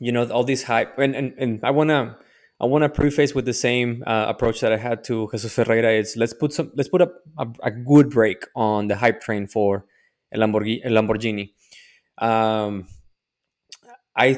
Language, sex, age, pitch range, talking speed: English, male, 20-39, 110-130 Hz, 190 wpm